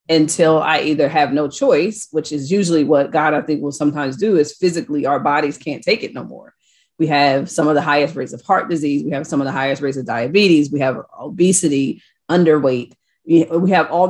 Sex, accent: female, American